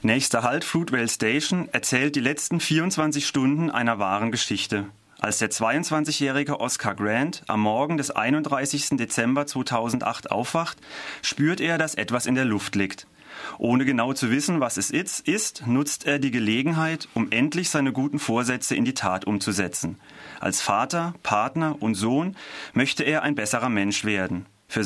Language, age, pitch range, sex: German, 30-49, 110-150 Hz, male